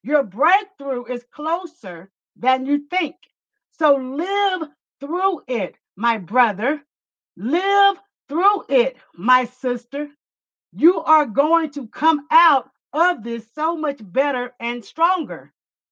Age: 50-69